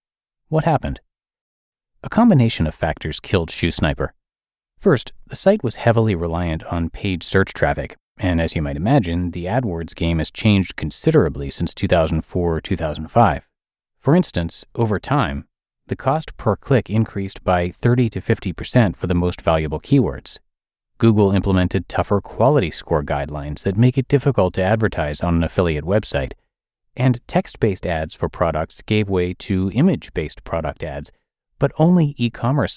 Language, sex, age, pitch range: English, male, 30-49, 85-115 Hz